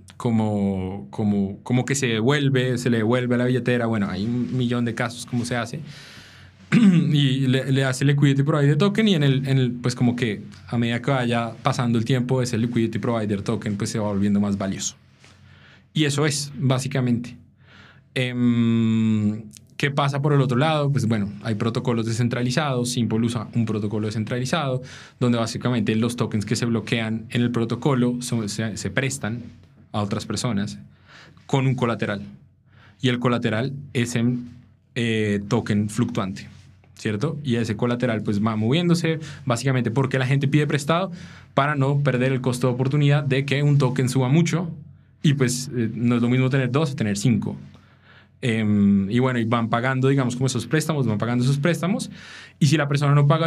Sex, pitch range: male, 110-135 Hz